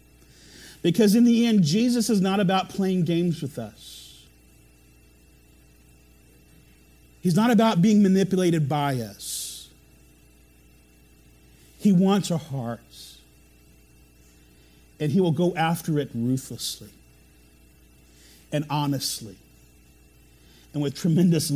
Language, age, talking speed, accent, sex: English, 50-69, 95 wpm, American, male